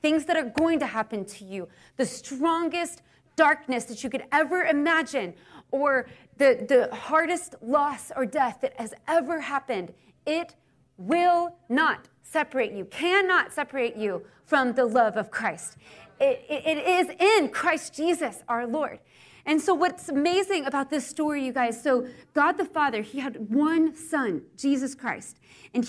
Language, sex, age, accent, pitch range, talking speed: English, female, 30-49, American, 245-325 Hz, 160 wpm